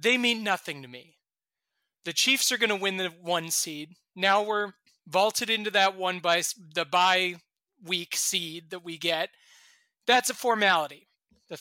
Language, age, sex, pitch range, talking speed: English, 30-49, male, 165-230 Hz, 165 wpm